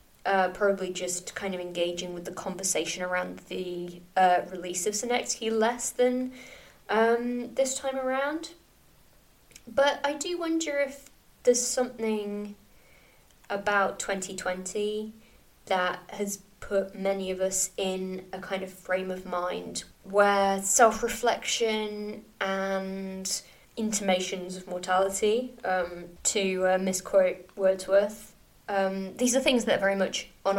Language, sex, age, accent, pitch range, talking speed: English, female, 20-39, British, 185-220 Hz, 125 wpm